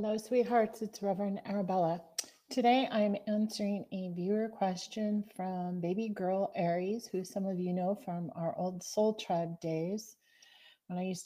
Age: 40-59